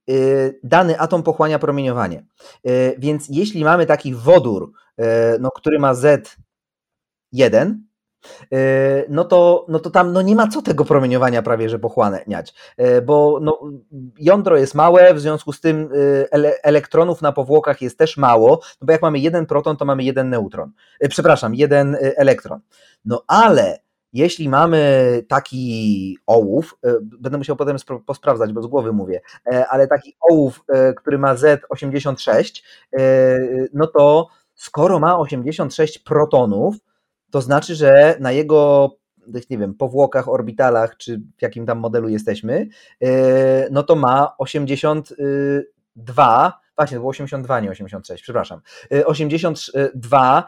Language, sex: Polish, male